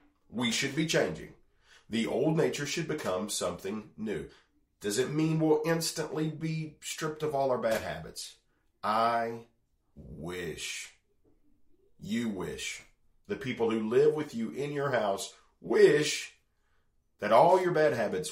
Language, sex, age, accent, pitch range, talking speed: English, male, 40-59, American, 110-150 Hz, 140 wpm